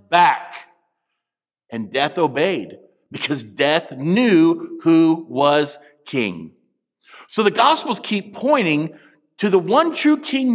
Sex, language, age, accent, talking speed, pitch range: male, English, 50-69, American, 115 wpm, 145-215 Hz